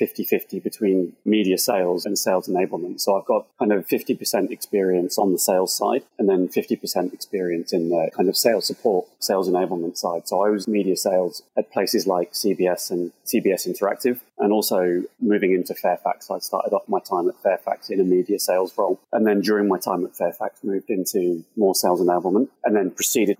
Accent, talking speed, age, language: British, 190 wpm, 30-49, English